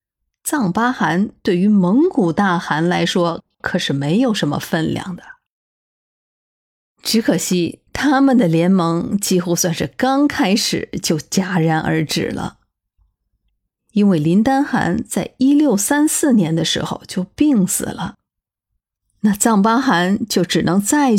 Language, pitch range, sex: Chinese, 170-225 Hz, female